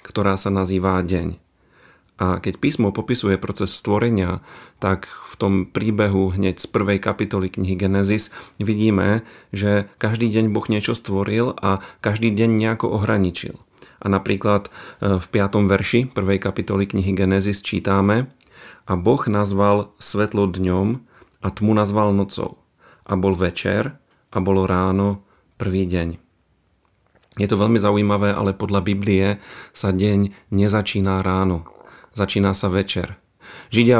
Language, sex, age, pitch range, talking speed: Slovak, male, 40-59, 95-105 Hz, 130 wpm